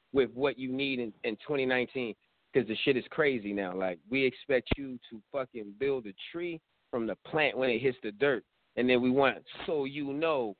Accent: American